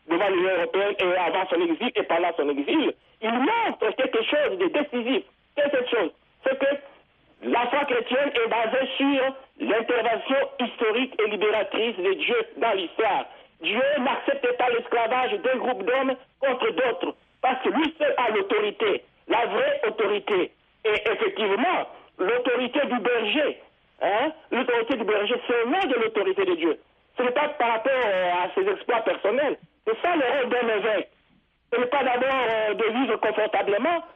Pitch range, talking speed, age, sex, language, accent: 235-340 Hz, 160 wpm, 60-79, male, French, French